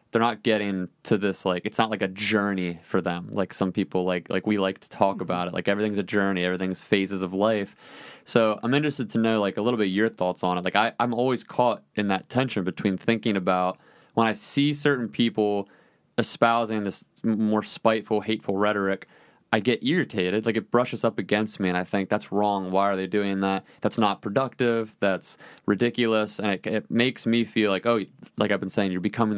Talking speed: 210 wpm